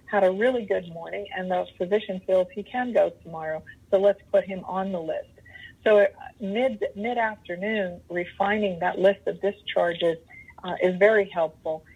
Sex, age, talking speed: female, 50-69, 160 wpm